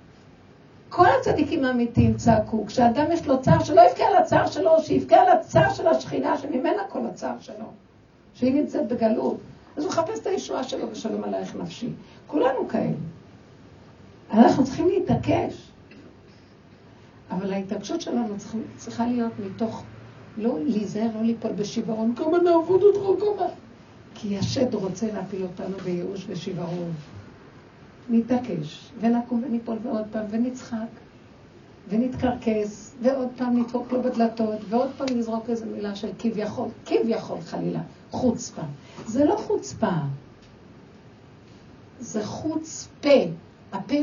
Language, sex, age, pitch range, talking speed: Hebrew, female, 60-79, 195-285 Hz, 120 wpm